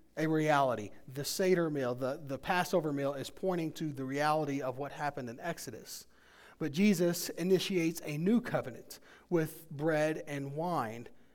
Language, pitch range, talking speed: English, 140-175 Hz, 155 wpm